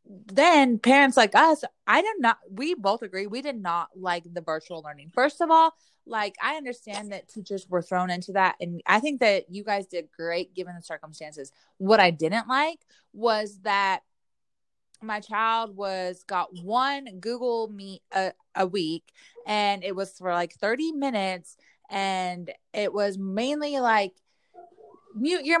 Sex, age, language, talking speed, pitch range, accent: female, 20-39, English, 165 wpm, 190-265 Hz, American